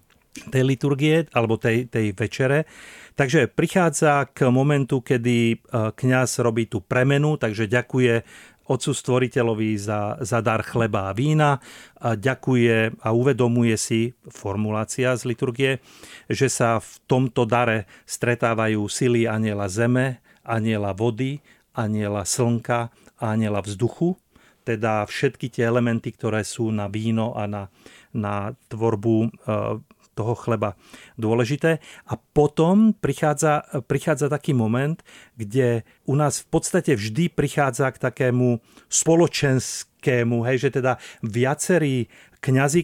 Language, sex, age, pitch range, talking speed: Czech, male, 40-59, 110-140 Hz, 120 wpm